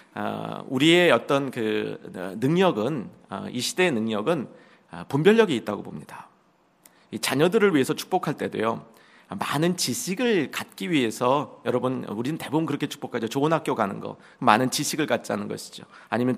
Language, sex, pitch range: Korean, male, 135-200 Hz